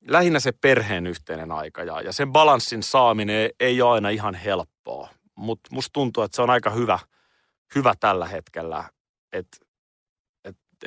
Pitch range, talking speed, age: 95-125 Hz, 145 wpm, 30-49